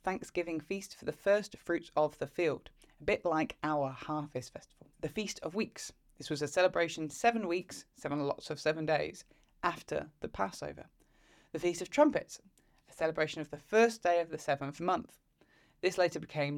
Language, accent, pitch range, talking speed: English, British, 145-185 Hz, 180 wpm